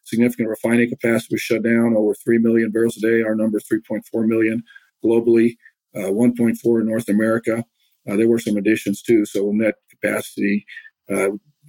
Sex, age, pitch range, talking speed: male, 50-69, 105-115 Hz, 185 wpm